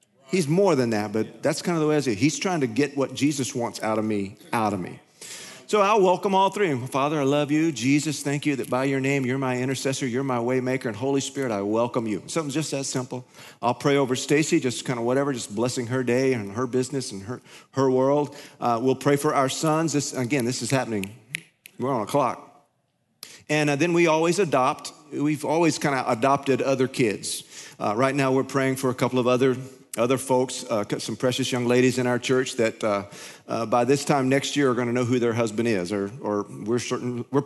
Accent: American